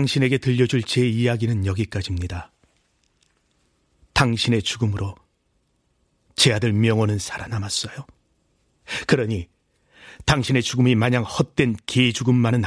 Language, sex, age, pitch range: Korean, male, 40-59, 100-130 Hz